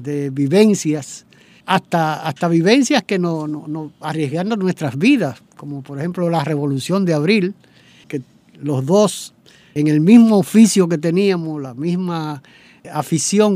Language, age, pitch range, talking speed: Spanish, 60-79, 145-185 Hz, 135 wpm